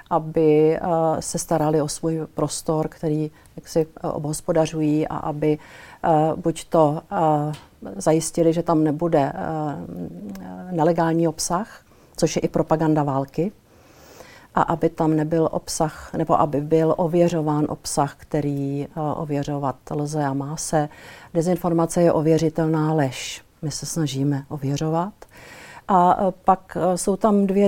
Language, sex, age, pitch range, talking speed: Slovak, female, 50-69, 155-170 Hz, 125 wpm